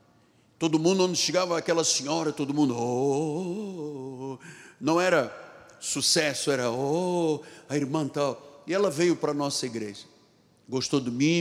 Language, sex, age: Portuguese, male, 60-79